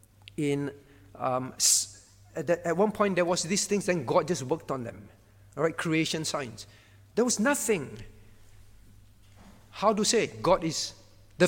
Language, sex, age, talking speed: English, male, 50-69, 145 wpm